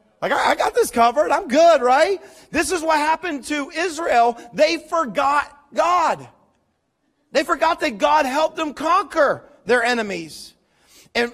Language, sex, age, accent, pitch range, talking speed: English, male, 40-59, American, 175-255 Hz, 145 wpm